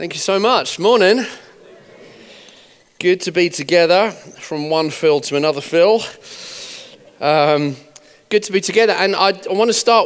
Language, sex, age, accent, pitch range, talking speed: English, male, 30-49, British, 140-190 Hz, 155 wpm